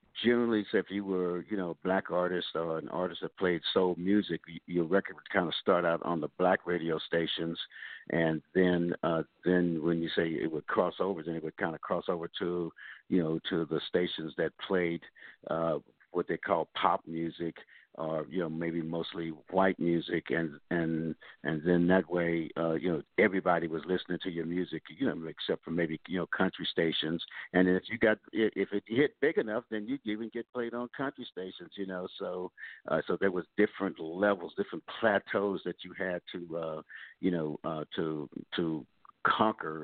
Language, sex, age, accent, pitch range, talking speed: English, male, 60-79, American, 85-100 Hz, 200 wpm